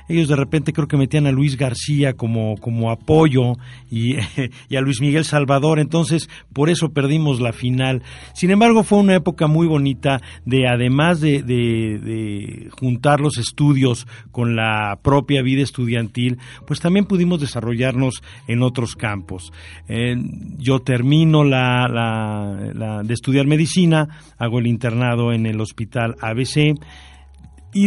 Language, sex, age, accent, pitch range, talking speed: Spanish, male, 50-69, Mexican, 115-145 Hz, 145 wpm